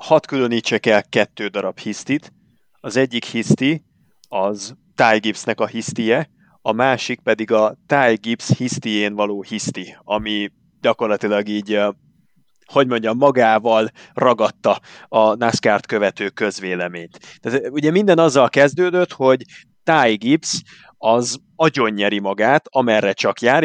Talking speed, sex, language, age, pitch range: 115 wpm, male, Hungarian, 30-49, 105-130 Hz